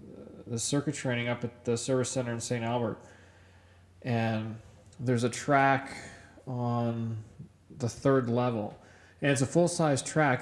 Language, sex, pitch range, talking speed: English, male, 105-130 Hz, 140 wpm